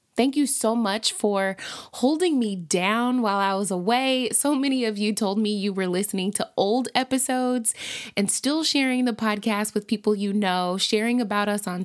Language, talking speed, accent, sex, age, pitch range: English, 190 wpm, American, female, 20-39, 195-245 Hz